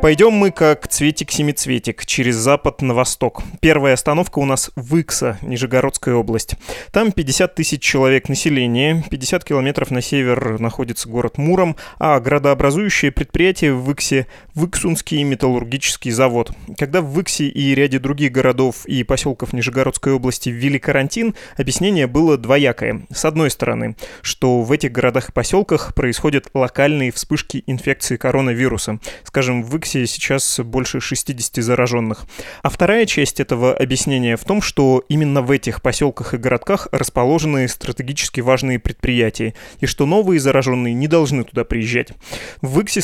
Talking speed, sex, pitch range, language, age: 140 wpm, male, 125-150 Hz, Russian, 20-39